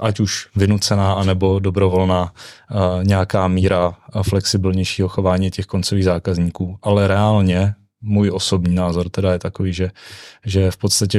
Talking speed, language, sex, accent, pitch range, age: 135 wpm, Czech, male, native, 95-100 Hz, 20-39